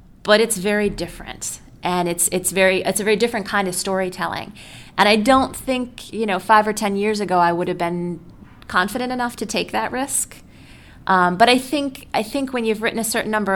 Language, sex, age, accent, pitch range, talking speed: English, female, 30-49, American, 185-245 Hz, 215 wpm